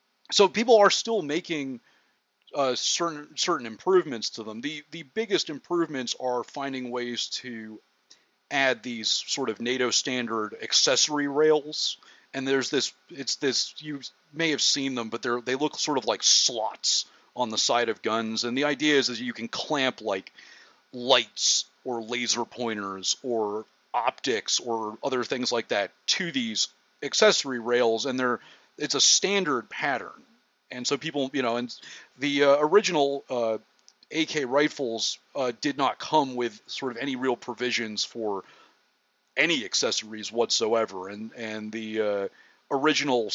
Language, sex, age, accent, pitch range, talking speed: English, male, 30-49, American, 115-145 Hz, 155 wpm